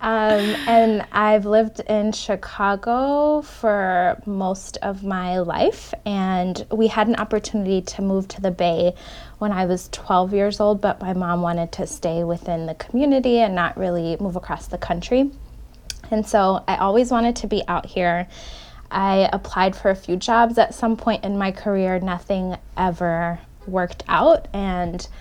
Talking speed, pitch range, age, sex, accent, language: 165 wpm, 180-225 Hz, 20-39, female, American, English